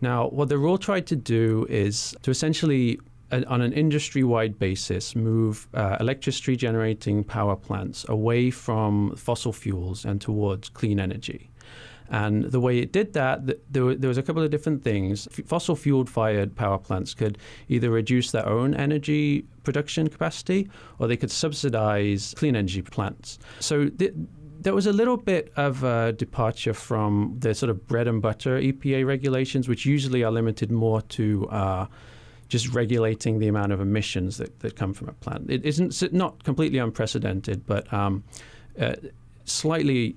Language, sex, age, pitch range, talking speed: English, male, 40-59, 110-140 Hz, 160 wpm